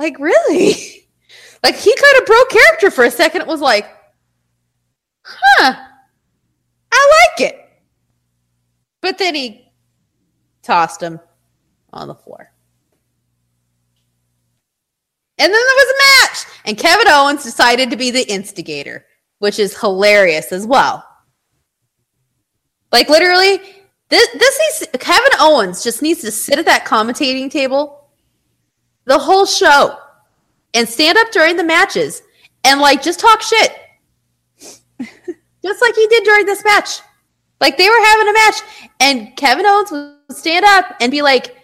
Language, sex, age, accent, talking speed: English, female, 20-39, American, 140 wpm